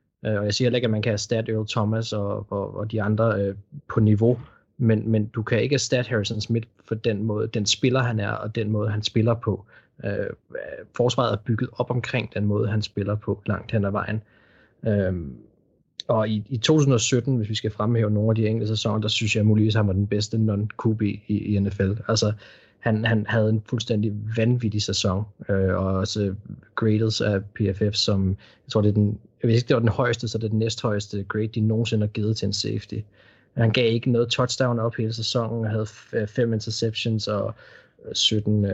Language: Danish